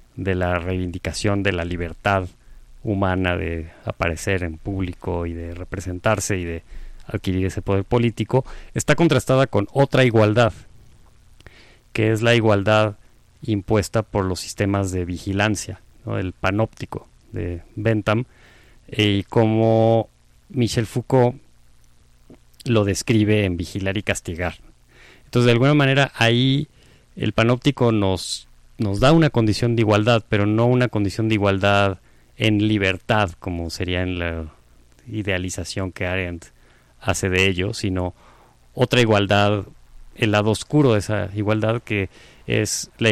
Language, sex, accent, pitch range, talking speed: Spanish, male, Mexican, 90-110 Hz, 130 wpm